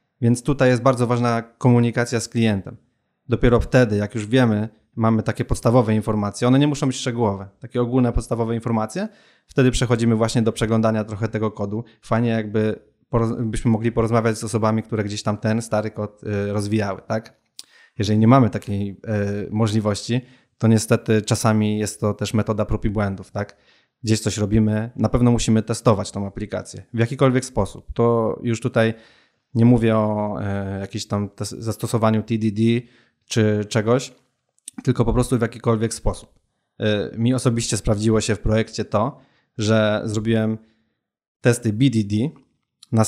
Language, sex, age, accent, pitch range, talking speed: Polish, male, 20-39, native, 110-120 Hz, 145 wpm